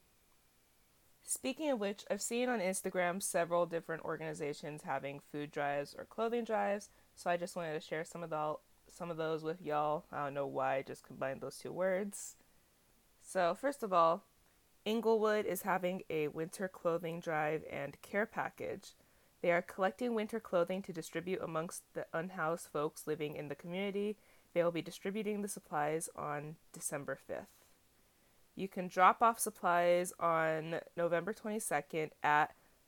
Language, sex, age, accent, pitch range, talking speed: English, female, 20-39, American, 155-195 Hz, 160 wpm